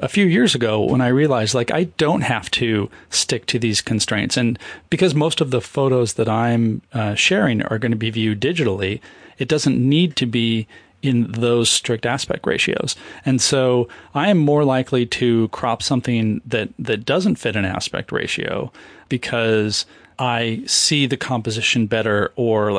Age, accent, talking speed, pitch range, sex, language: 30-49, American, 170 wpm, 115-140 Hz, male, English